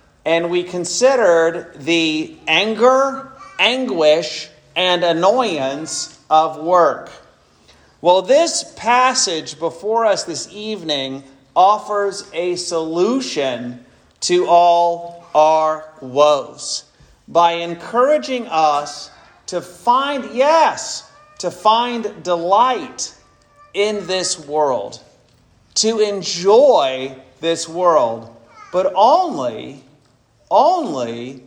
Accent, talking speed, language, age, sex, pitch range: American, 80 wpm, English, 40-59, male, 145-195 Hz